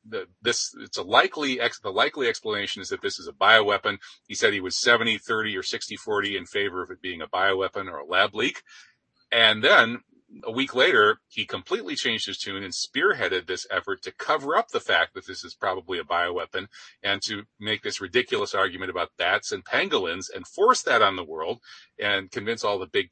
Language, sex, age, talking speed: English, male, 40-59, 210 wpm